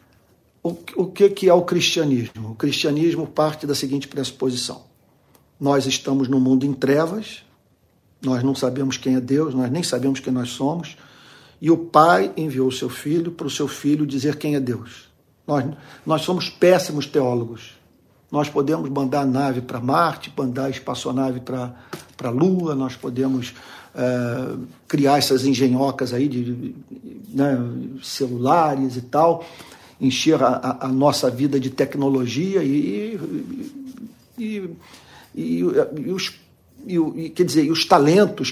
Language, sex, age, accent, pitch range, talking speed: Portuguese, male, 50-69, Brazilian, 130-160 Hz, 145 wpm